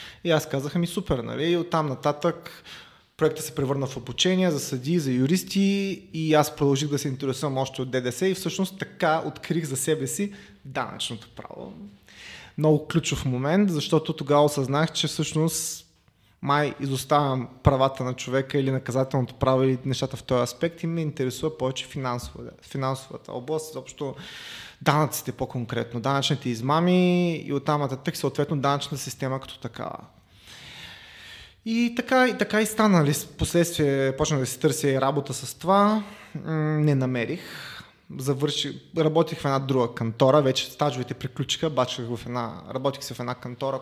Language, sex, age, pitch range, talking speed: Bulgarian, male, 20-39, 130-165 Hz, 150 wpm